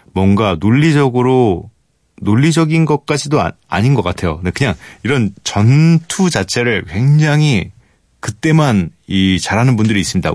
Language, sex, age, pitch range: Korean, male, 30-49, 95-145 Hz